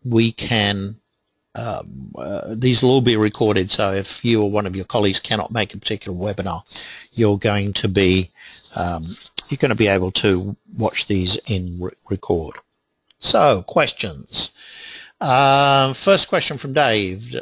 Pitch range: 110-150 Hz